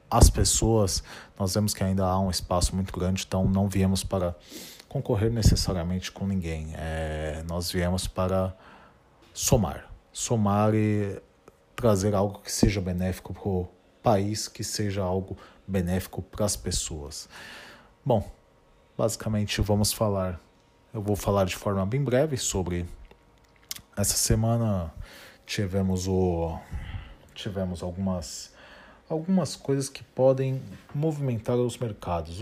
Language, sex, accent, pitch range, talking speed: Portuguese, male, Brazilian, 90-105 Hz, 120 wpm